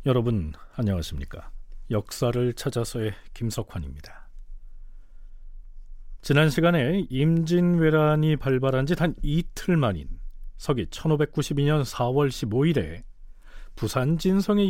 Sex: male